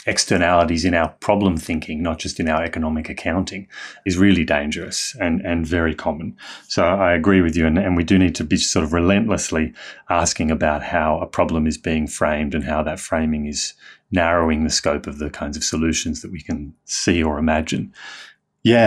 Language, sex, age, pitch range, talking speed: English, male, 30-49, 80-95 Hz, 195 wpm